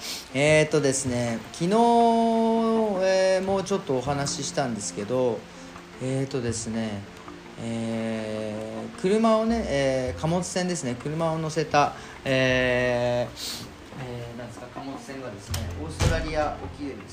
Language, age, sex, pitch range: Japanese, 40-59, male, 110-170 Hz